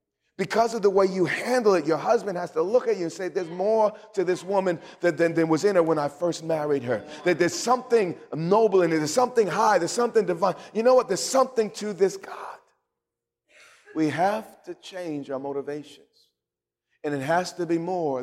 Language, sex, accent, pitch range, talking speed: English, male, American, 150-210 Hz, 210 wpm